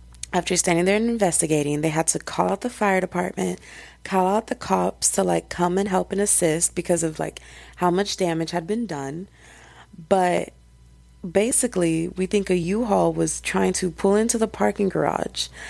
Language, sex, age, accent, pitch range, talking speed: English, female, 20-39, American, 145-190 Hz, 180 wpm